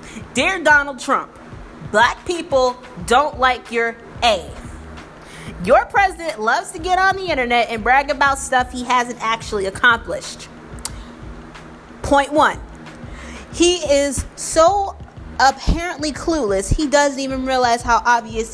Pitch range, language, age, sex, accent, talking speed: 210-285 Hz, English, 30-49, female, American, 125 wpm